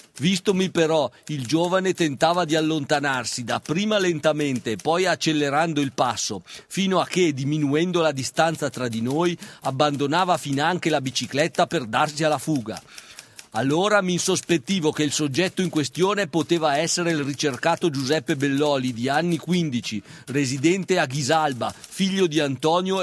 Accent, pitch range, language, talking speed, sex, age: native, 150-180 Hz, Italian, 140 wpm, male, 40-59